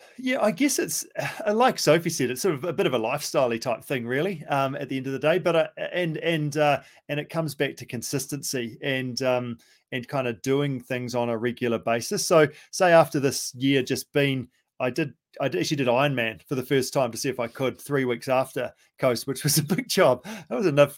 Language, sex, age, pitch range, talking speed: English, male, 30-49, 125-160 Hz, 230 wpm